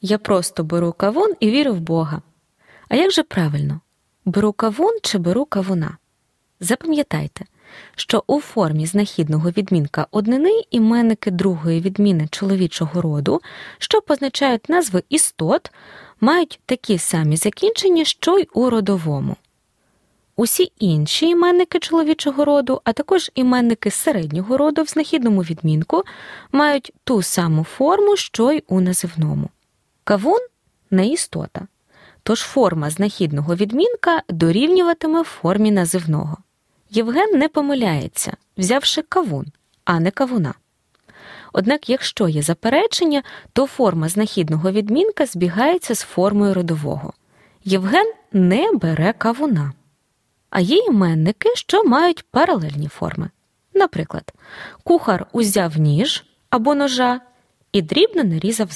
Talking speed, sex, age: 115 wpm, female, 20-39